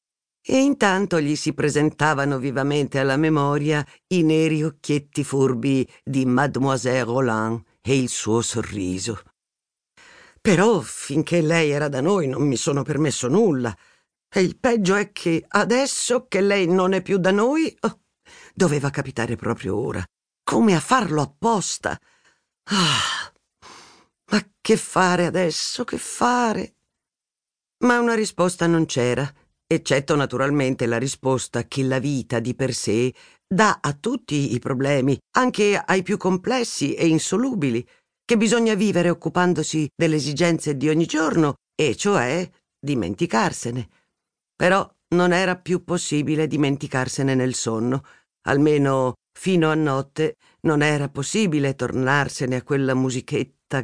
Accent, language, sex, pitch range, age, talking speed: native, Italian, female, 135-180 Hz, 50-69, 130 wpm